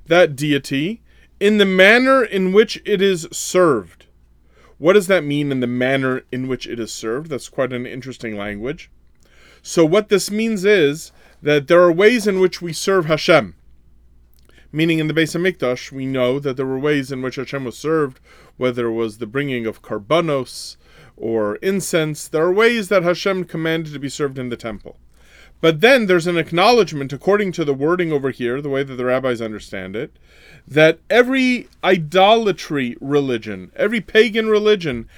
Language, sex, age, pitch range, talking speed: English, male, 30-49, 130-190 Hz, 175 wpm